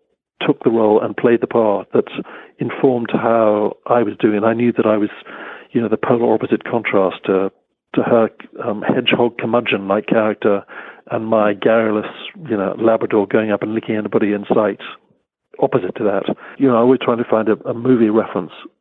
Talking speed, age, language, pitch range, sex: 190 wpm, 50-69, English, 110-125 Hz, male